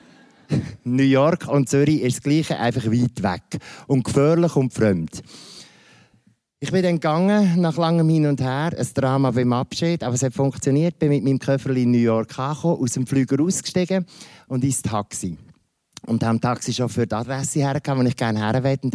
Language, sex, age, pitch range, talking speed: German, male, 50-69, 120-155 Hz, 185 wpm